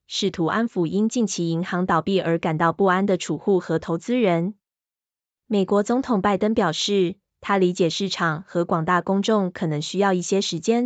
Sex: female